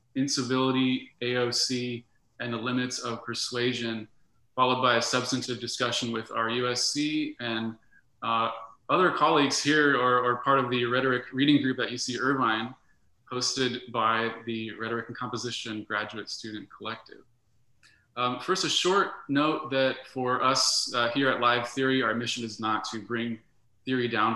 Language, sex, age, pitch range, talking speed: English, male, 20-39, 115-130 Hz, 150 wpm